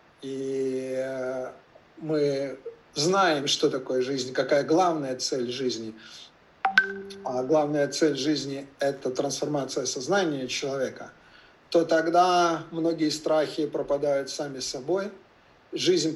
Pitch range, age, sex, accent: 135-170 Hz, 50-69, male, native